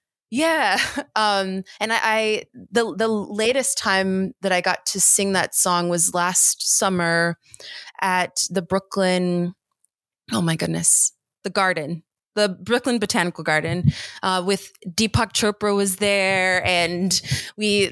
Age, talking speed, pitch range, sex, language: 20-39, 130 wpm, 175-215 Hz, female, English